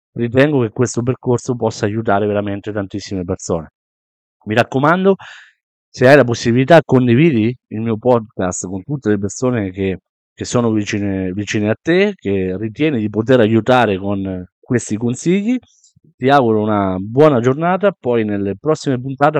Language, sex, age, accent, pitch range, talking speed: Italian, male, 50-69, native, 100-130 Hz, 145 wpm